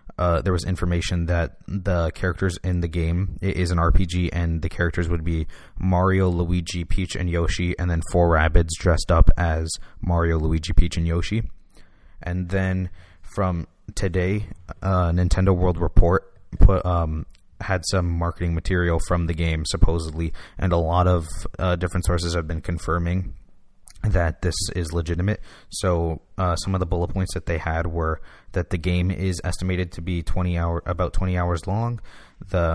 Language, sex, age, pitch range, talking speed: English, male, 20-39, 85-95 Hz, 175 wpm